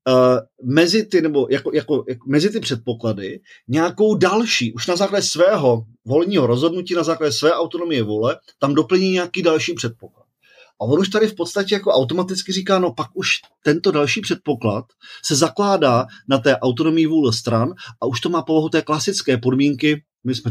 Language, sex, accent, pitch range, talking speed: Czech, male, native, 130-190 Hz, 175 wpm